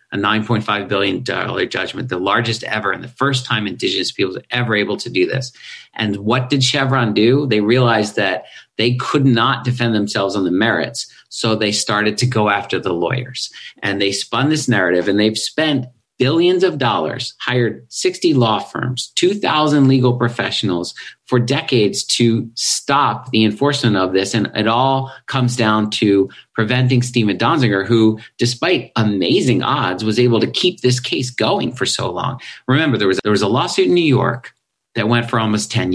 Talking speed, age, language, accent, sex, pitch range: 175 wpm, 50-69, English, American, male, 110-135 Hz